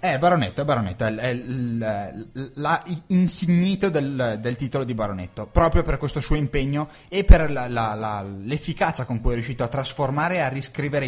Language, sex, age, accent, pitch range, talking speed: Italian, male, 20-39, native, 115-150 Hz, 195 wpm